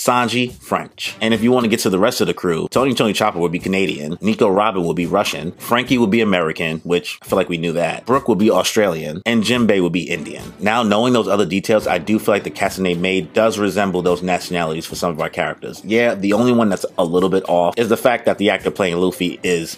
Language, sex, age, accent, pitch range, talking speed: English, male, 30-49, American, 90-115 Hz, 255 wpm